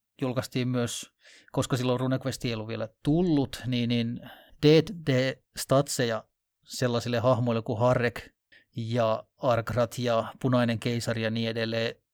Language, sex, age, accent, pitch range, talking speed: Finnish, male, 30-49, native, 115-130 Hz, 125 wpm